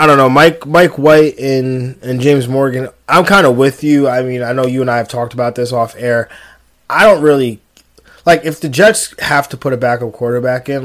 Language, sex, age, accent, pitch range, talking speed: English, male, 20-39, American, 120-145 Hz, 230 wpm